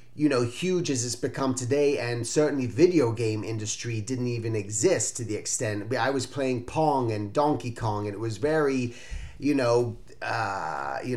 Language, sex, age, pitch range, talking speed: English, male, 30-49, 120-150 Hz, 175 wpm